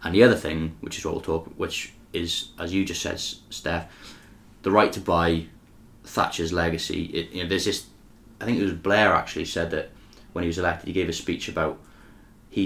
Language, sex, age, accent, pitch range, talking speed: English, male, 20-39, British, 80-95 Hz, 215 wpm